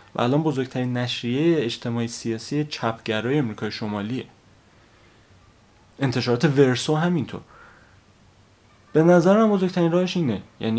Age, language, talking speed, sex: 30-49, Persian, 100 wpm, male